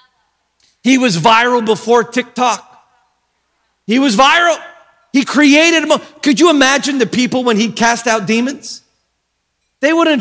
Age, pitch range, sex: 40-59, 165-230 Hz, male